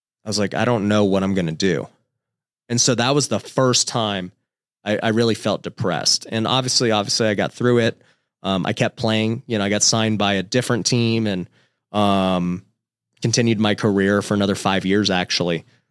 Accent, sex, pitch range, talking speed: American, male, 100-120 Hz, 200 wpm